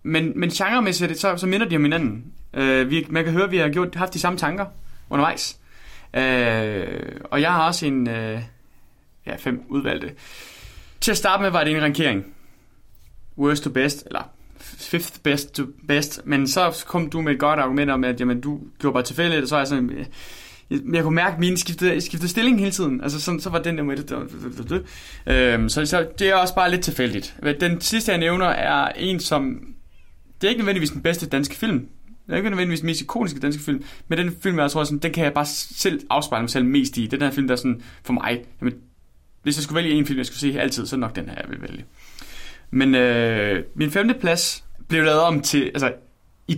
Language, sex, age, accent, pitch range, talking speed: Danish, male, 20-39, native, 125-175 Hz, 230 wpm